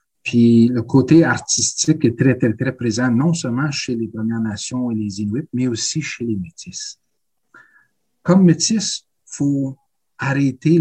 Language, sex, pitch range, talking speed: French, male, 115-155 Hz, 150 wpm